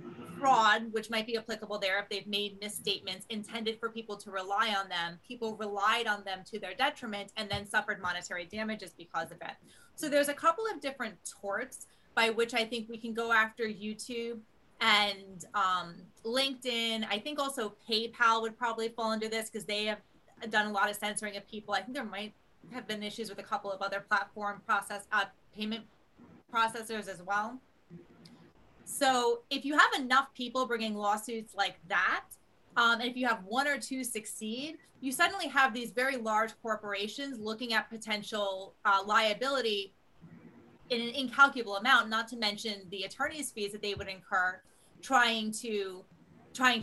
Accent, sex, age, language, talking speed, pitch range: American, female, 30-49, English, 175 wpm, 205-245 Hz